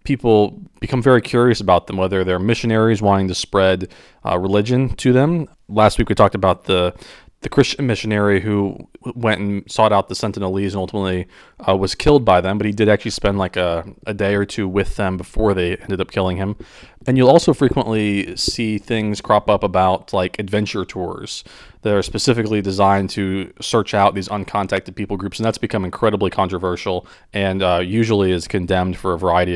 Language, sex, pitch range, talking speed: English, male, 95-115 Hz, 190 wpm